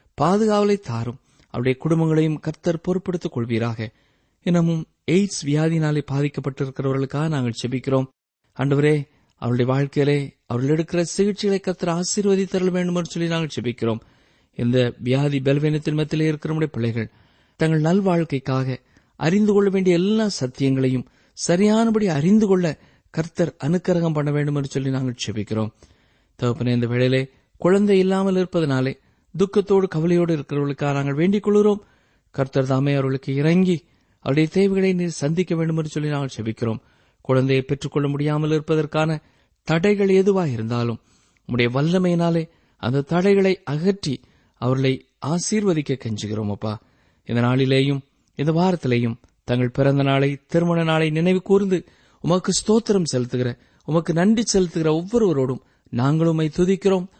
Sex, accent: male, native